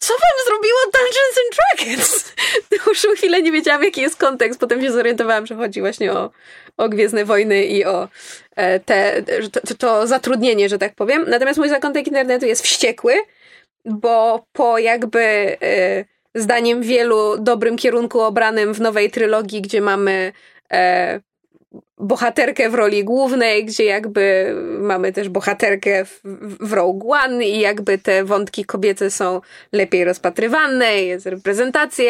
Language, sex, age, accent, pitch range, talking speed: Polish, female, 20-39, native, 210-270 Hz, 150 wpm